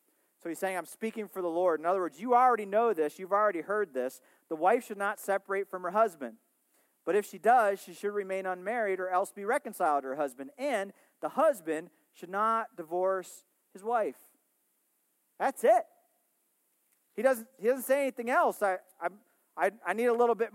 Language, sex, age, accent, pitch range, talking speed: English, male, 40-59, American, 180-240 Hz, 195 wpm